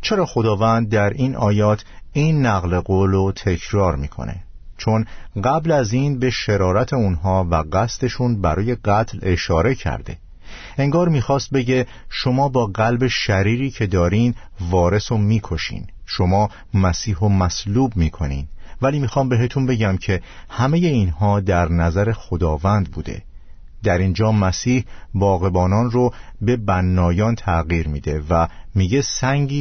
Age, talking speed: 50-69, 125 wpm